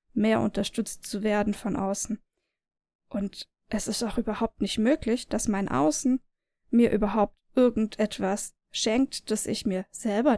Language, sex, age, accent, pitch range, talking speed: German, female, 10-29, German, 205-250 Hz, 140 wpm